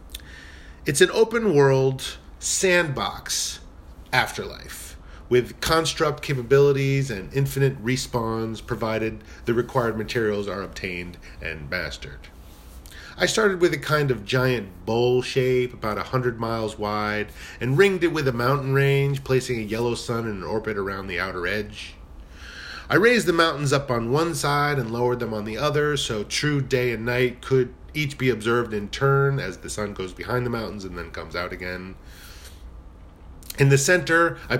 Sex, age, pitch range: male, 40-59, 90-135 Hz